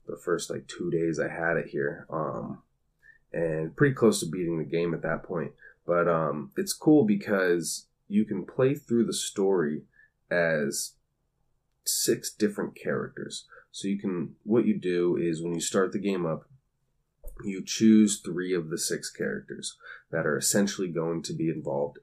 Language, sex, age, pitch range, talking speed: English, male, 20-39, 80-105 Hz, 170 wpm